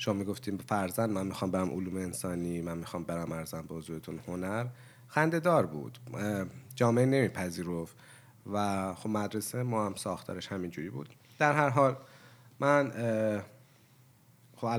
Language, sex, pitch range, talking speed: Persian, male, 95-125 Hz, 140 wpm